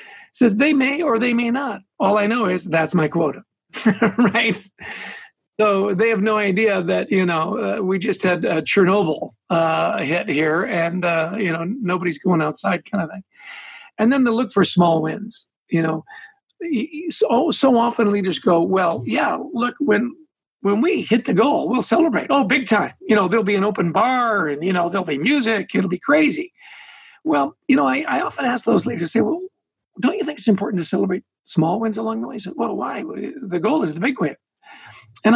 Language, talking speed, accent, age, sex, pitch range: English, 200 wpm, American, 50-69, male, 180-245 Hz